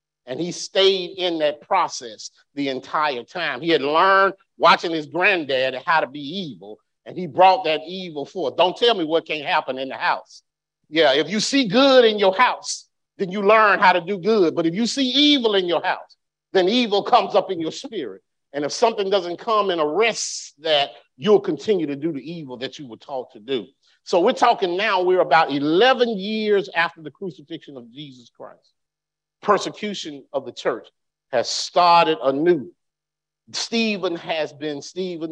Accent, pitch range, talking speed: American, 145-195 Hz, 185 wpm